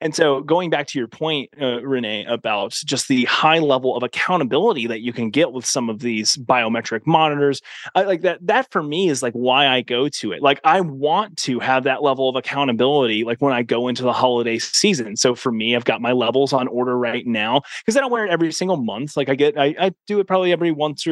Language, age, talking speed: English, 20-39, 240 wpm